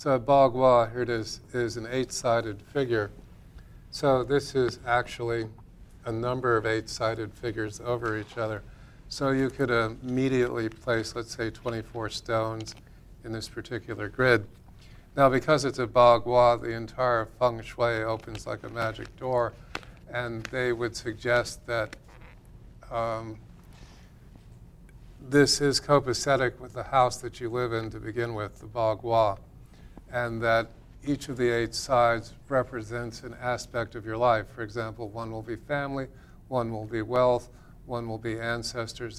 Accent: American